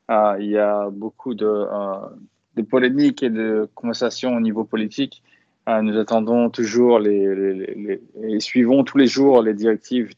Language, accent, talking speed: French, French, 175 wpm